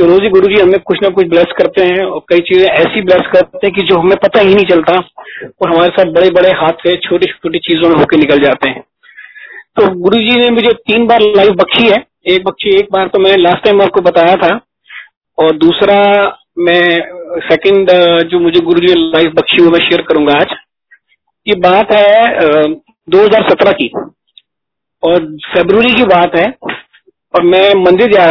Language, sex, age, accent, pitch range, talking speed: Hindi, male, 40-59, native, 175-210 Hz, 185 wpm